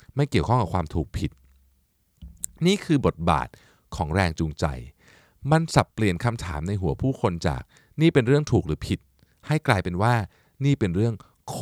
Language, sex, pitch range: Thai, male, 90-130 Hz